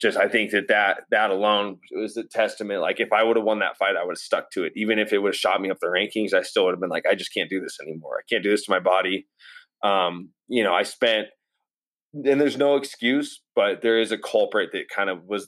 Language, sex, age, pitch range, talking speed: English, male, 20-39, 105-145 Hz, 275 wpm